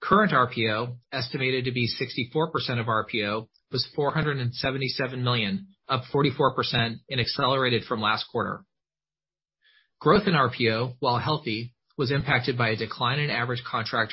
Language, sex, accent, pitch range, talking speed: English, male, American, 120-140 Hz, 125 wpm